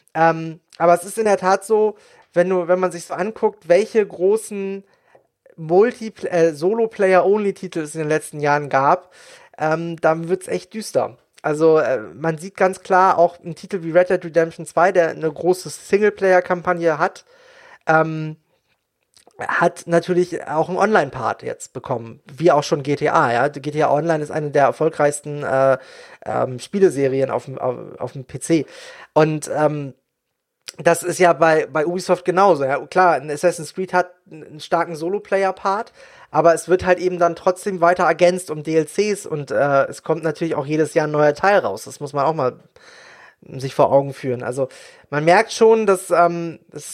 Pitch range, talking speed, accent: 155-185 Hz, 175 wpm, German